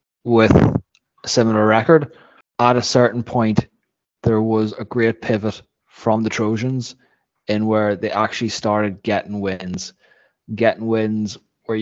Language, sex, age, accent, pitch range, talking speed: English, male, 20-39, Irish, 105-115 Hz, 130 wpm